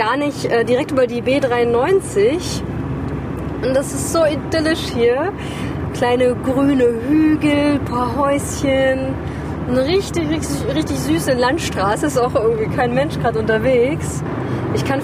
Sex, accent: female, German